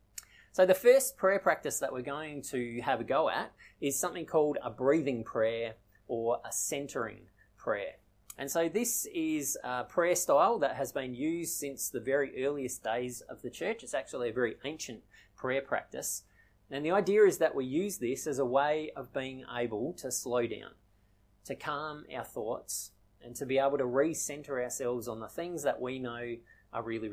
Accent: Australian